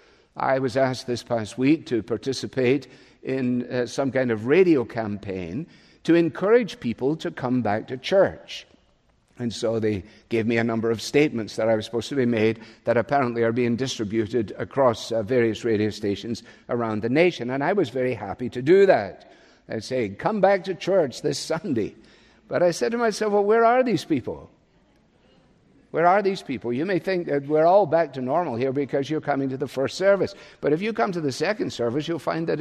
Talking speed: 200 wpm